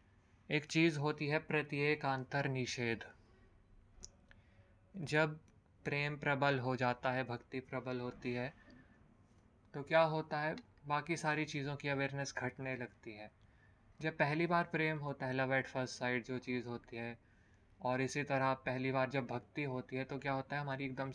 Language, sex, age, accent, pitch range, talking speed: Hindi, male, 20-39, native, 115-140 Hz, 160 wpm